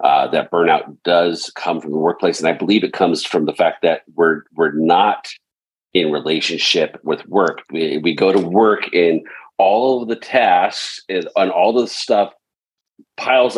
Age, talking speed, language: 40-59, 175 wpm, English